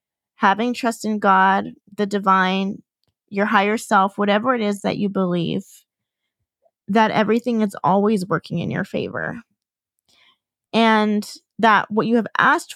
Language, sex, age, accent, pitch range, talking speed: English, female, 20-39, American, 195-230 Hz, 135 wpm